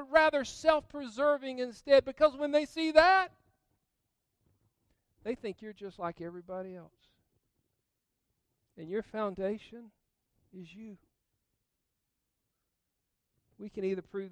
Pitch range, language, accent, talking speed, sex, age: 180-230 Hz, English, American, 100 wpm, male, 50-69